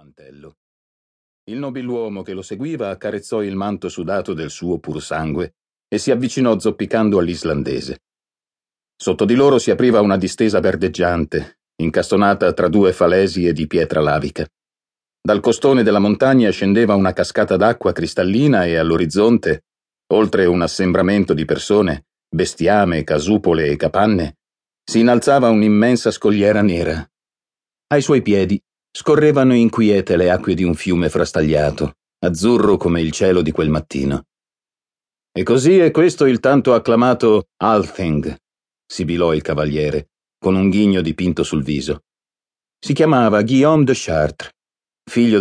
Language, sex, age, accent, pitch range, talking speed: Italian, male, 40-59, native, 85-115 Hz, 130 wpm